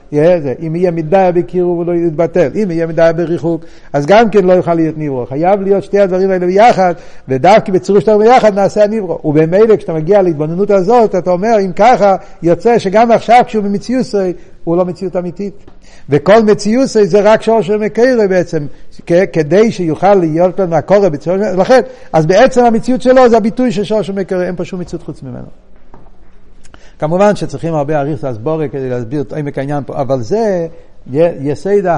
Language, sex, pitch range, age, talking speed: Hebrew, male, 130-195 Hz, 50-69, 160 wpm